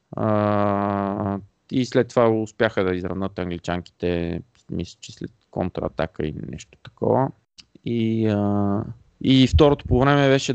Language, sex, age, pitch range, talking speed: Bulgarian, male, 20-39, 100-125 Hz, 125 wpm